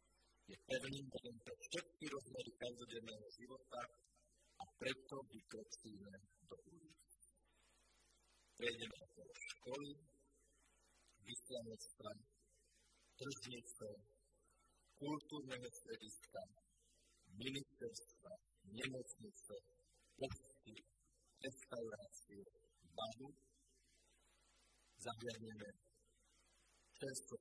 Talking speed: 65 wpm